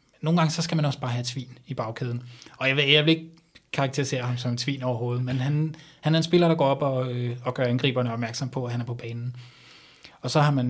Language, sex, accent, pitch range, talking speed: Danish, male, native, 125-145 Hz, 260 wpm